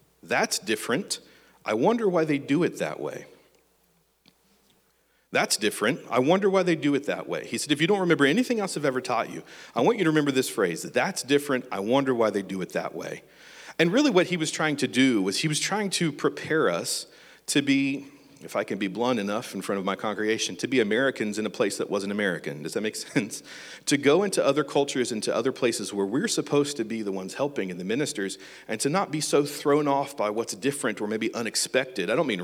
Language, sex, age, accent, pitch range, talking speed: English, male, 40-59, American, 105-150 Hz, 230 wpm